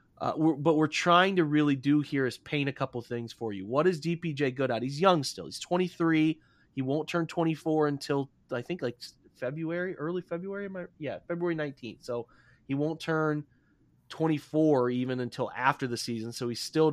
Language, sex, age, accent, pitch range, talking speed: English, male, 30-49, American, 120-155 Hz, 200 wpm